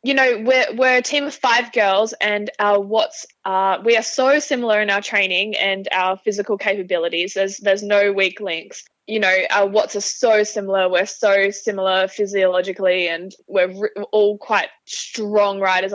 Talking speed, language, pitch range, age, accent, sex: 175 wpm, English, 195-230 Hz, 10-29, Australian, female